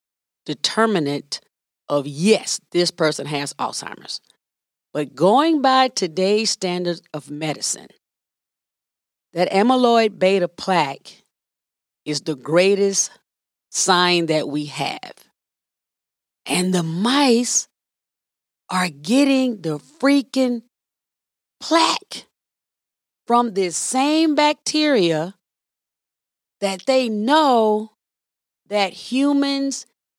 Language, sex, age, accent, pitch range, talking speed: English, female, 40-59, American, 165-255 Hz, 85 wpm